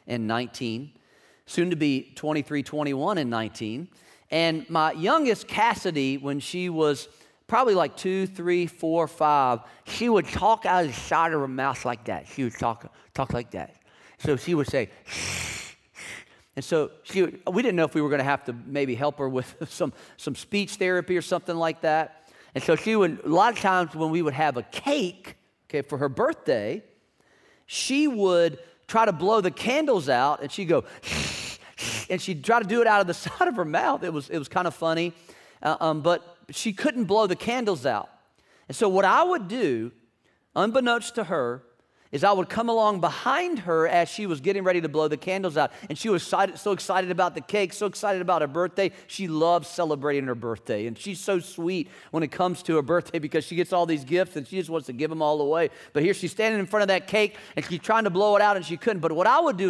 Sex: male